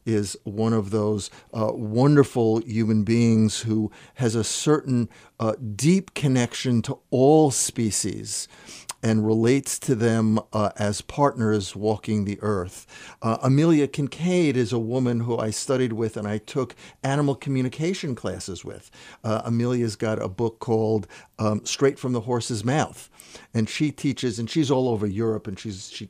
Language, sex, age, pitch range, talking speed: English, male, 50-69, 100-120 Hz, 155 wpm